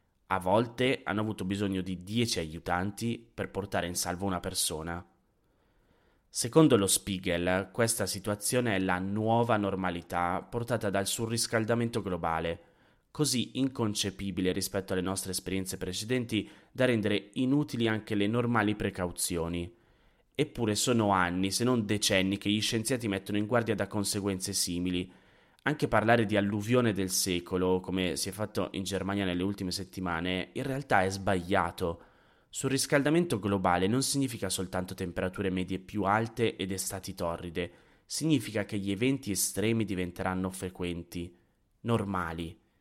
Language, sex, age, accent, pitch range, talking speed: Italian, male, 20-39, native, 95-115 Hz, 135 wpm